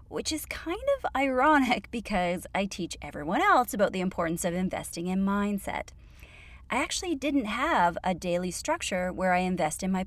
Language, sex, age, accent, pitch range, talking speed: English, female, 30-49, American, 175-250 Hz, 175 wpm